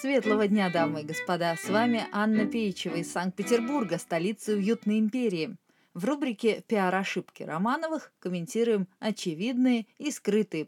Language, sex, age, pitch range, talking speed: Russian, female, 30-49, 185-245 Hz, 130 wpm